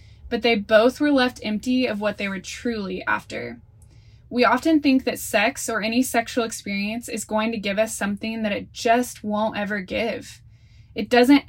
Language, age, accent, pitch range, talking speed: English, 10-29, American, 195-240 Hz, 185 wpm